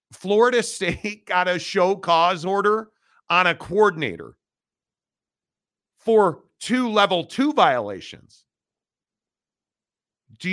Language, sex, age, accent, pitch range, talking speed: English, male, 50-69, American, 170-215 Hz, 85 wpm